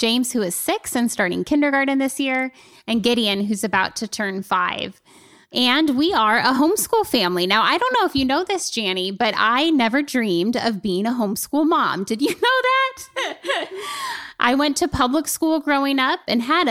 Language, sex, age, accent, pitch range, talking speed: English, female, 10-29, American, 215-275 Hz, 190 wpm